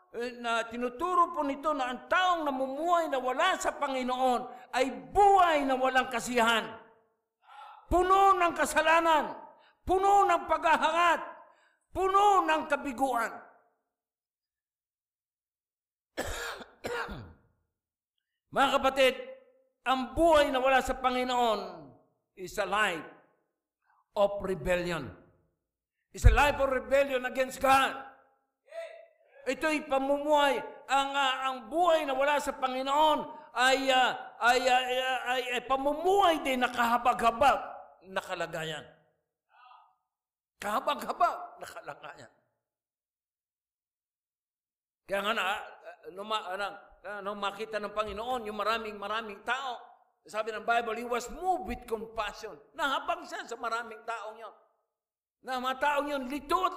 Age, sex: 50-69, male